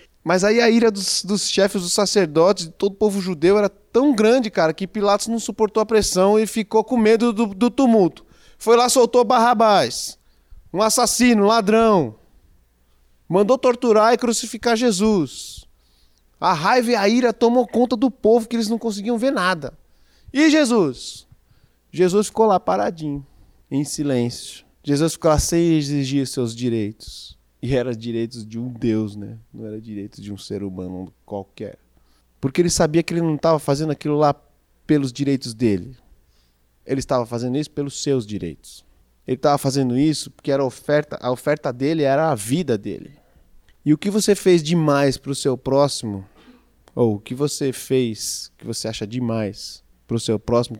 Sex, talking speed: male, 175 wpm